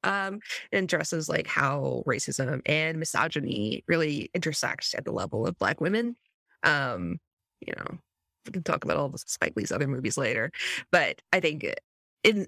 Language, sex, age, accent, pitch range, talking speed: English, female, 30-49, American, 145-180 Hz, 165 wpm